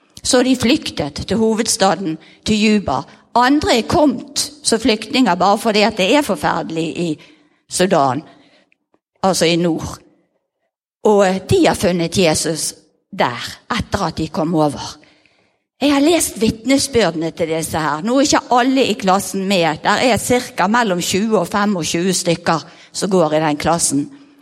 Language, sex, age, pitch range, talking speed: English, female, 50-69, 165-245 Hz, 155 wpm